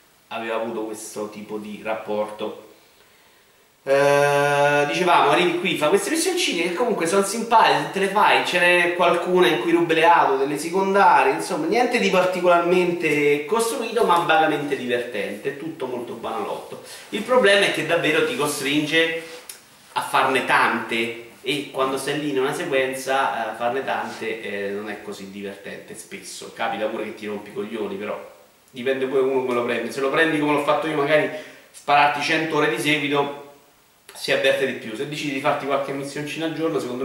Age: 30-49